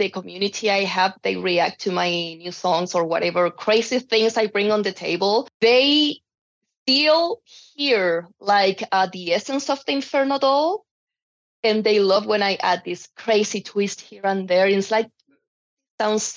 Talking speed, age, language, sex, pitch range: 165 wpm, 20-39, English, female, 180-225 Hz